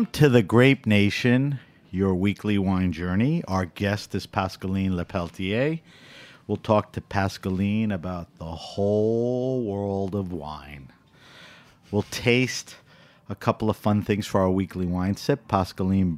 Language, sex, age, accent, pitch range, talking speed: English, male, 50-69, American, 90-120 Hz, 135 wpm